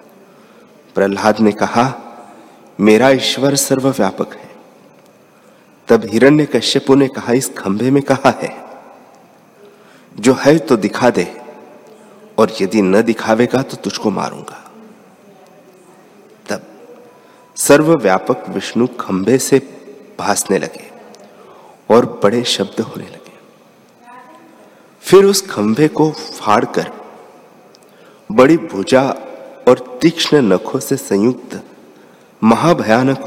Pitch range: 105-140 Hz